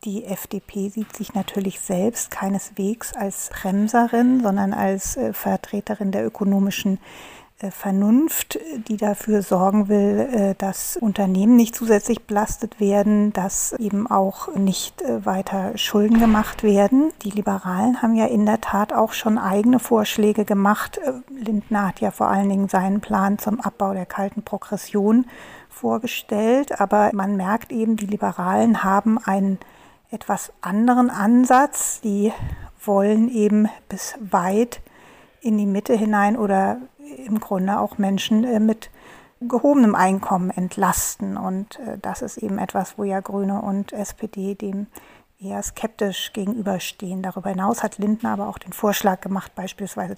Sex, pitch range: female, 195-220 Hz